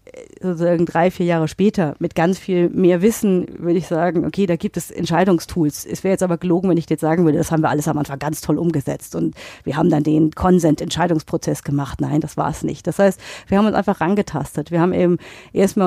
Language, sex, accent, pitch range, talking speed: German, female, German, 160-190 Hz, 225 wpm